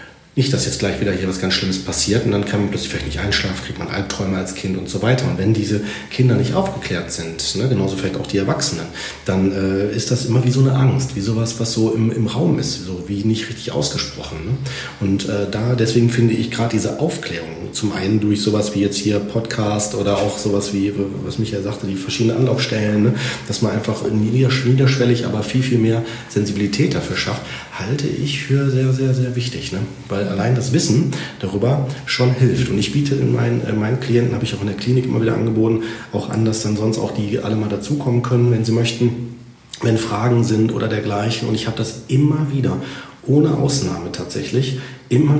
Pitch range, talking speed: 105-130 Hz, 210 wpm